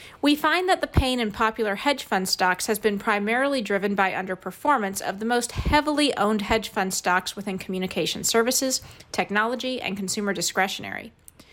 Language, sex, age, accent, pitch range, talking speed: English, female, 40-59, American, 190-250 Hz, 160 wpm